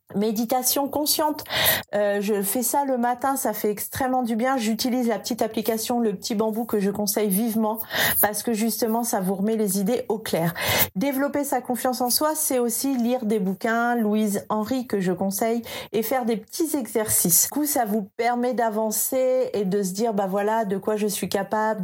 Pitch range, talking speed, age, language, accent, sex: 195-250 Hz, 200 wpm, 40-59, English, French, female